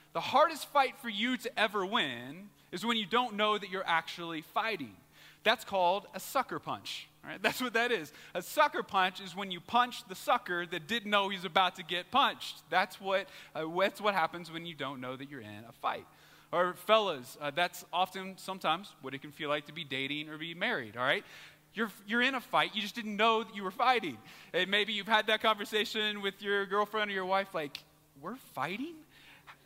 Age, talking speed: 20-39, 215 wpm